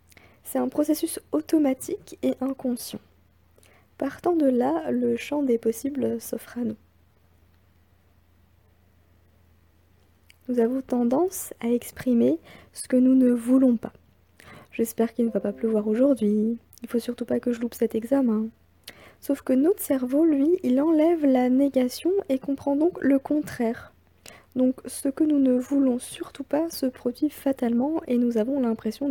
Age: 20-39